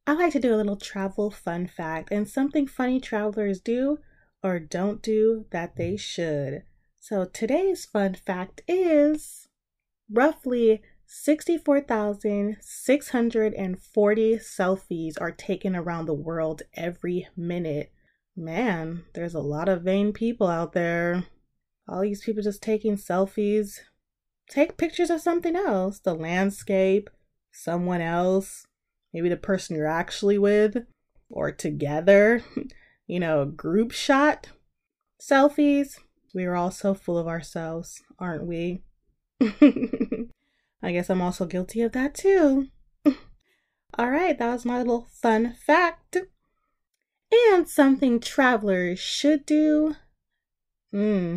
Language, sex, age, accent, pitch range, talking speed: English, female, 20-39, American, 180-260 Hz, 120 wpm